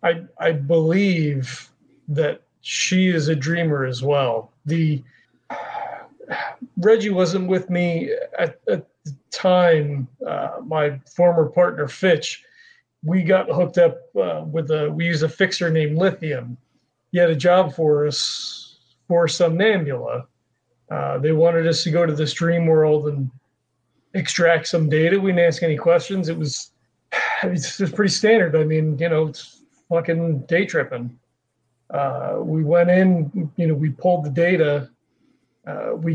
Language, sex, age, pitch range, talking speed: English, male, 40-59, 145-175 Hz, 155 wpm